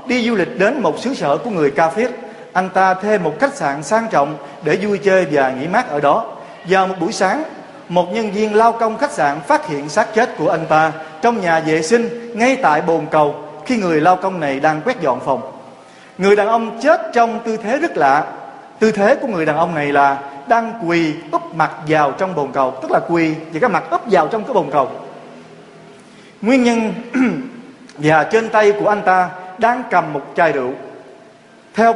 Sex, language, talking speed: male, Vietnamese, 210 wpm